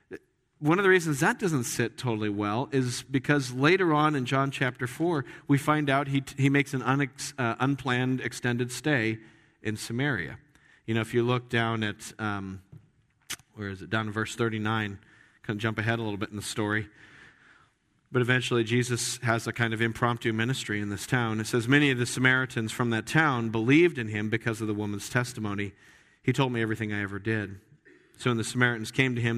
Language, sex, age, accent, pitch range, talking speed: English, male, 40-59, American, 110-145 Hz, 200 wpm